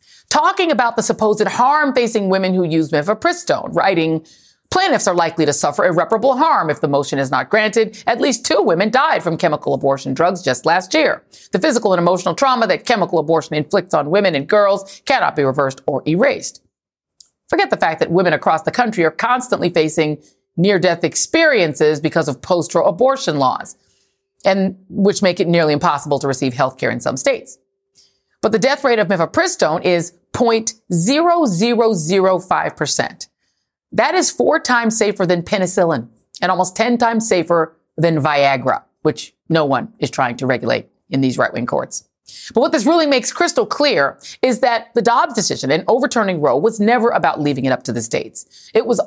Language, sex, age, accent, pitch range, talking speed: English, female, 40-59, American, 155-230 Hz, 185 wpm